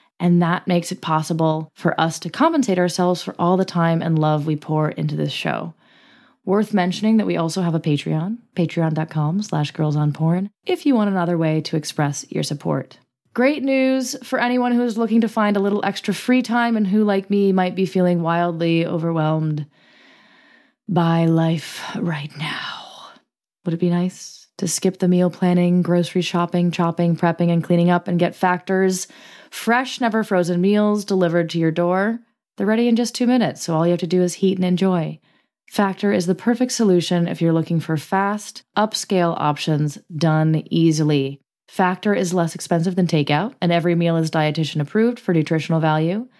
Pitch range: 160-200 Hz